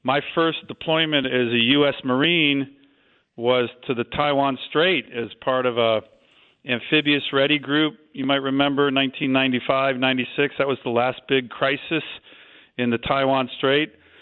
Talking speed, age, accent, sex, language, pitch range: 140 wpm, 40-59, American, male, English, 130-150 Hz